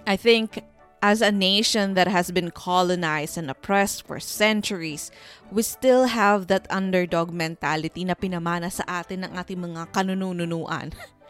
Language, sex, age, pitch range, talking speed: English, female, 20-39, 180-250 Hz, 140 wpm